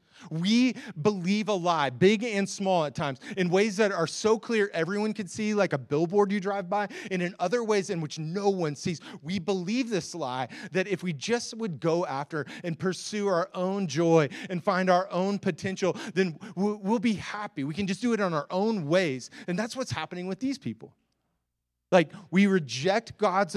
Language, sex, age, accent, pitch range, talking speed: English, male, 30-49, American, 145-205 Hz, 200 wpm